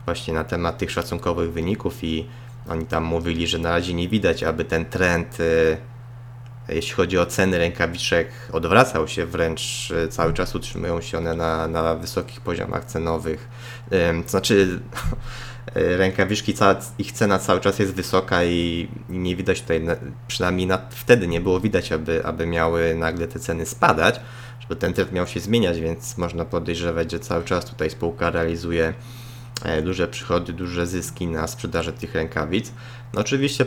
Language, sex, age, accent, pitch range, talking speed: Polish, male, 20-39, native, 85-120 Hz, 155 wpm